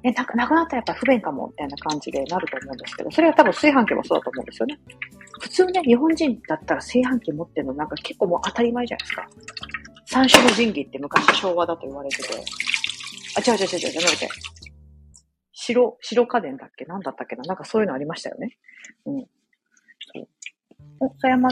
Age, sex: 40-59, female